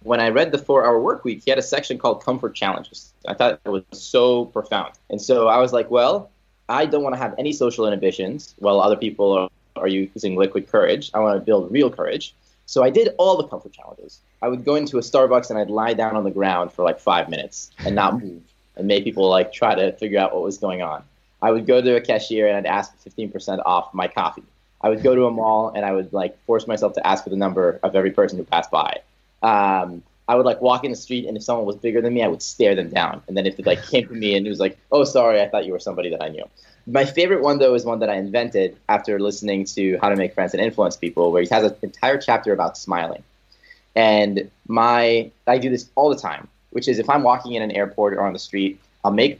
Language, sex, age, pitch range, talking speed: English, male, 20-39, 95-120 Hz, 260 wpm